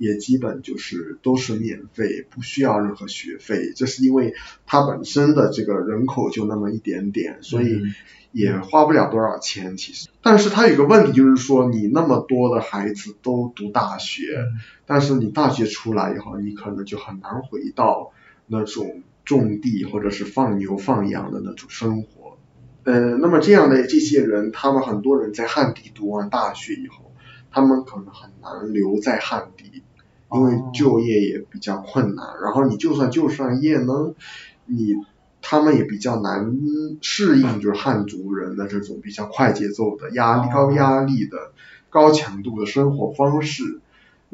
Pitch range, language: 105-140 Hz, Chinese